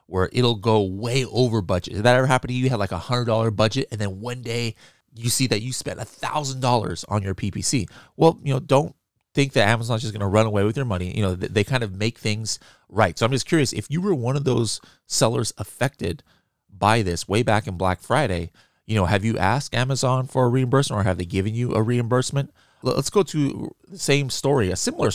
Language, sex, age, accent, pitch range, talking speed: English, male, 30-49, American, 105-135 Hz, 235 wpm